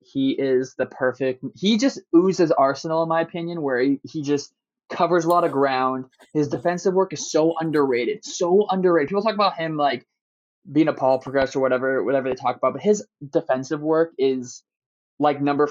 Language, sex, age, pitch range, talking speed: English, male, 20-39, 130-160 Hz, 190 wpm